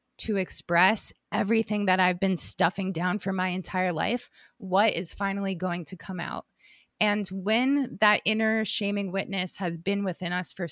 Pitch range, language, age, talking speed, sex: 180-215 Hz, English, 20-39, 170 wpm, female